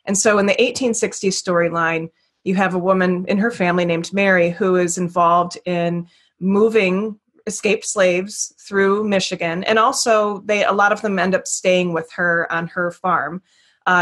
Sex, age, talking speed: female, 20-39, 170 wpm